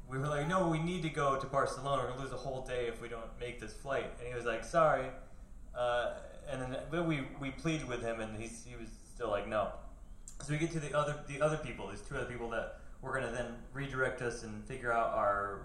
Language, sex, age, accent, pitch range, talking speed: English, male, 20-39, American, 125-185 Hz, 255 wpm